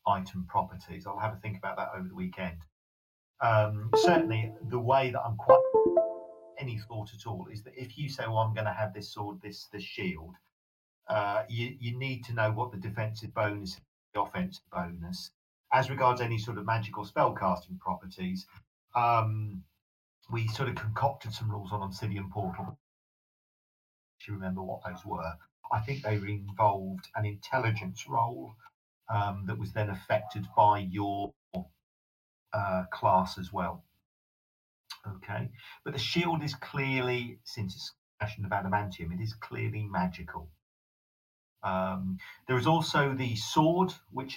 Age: 40-59